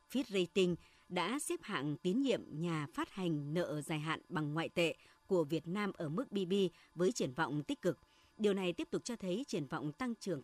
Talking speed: 215 wpm